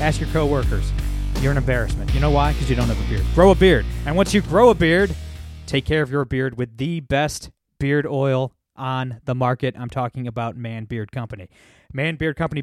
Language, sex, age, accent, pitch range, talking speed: English, male, 20-39, American, 120-150 Hz, 220 wpm